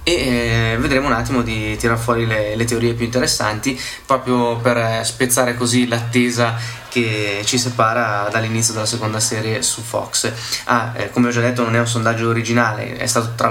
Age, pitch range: 20-39, 115-130 Hz